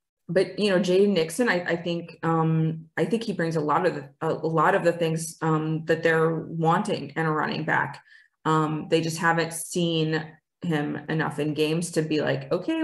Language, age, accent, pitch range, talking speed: English, 20-39, American, 155-180 Hz, 200 wpm